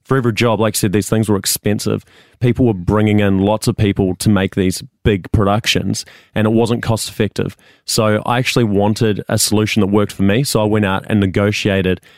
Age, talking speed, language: 20-39, 210 wpm, English